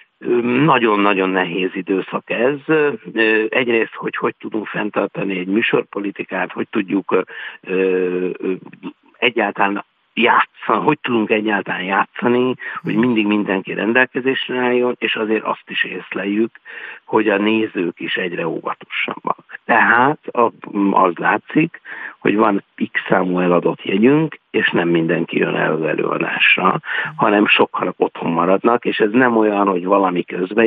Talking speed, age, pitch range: 115 wpm, 60-79, 95-120 Hz